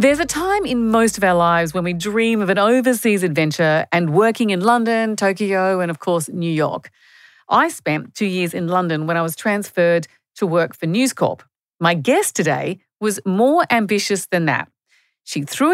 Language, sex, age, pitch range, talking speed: English, female, 50-69, 170-230 Hz, 190 wpm